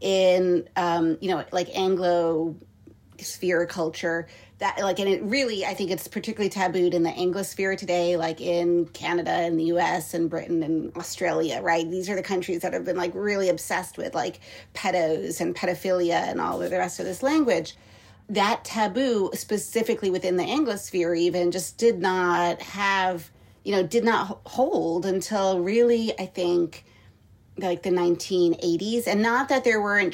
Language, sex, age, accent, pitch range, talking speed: English, female, 30-49, American, 170-195 Hz, 165 wpm